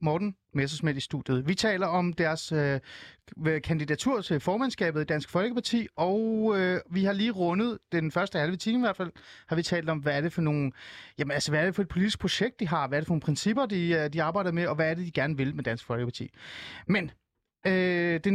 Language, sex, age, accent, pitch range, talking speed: Danish, male, 30-49, native, 145-180 Hz, 230 wpm